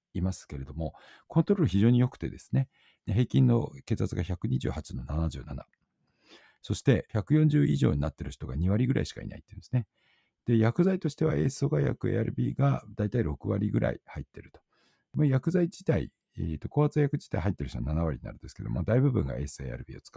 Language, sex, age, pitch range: Japanese, male, 50-69, 85-135 Hz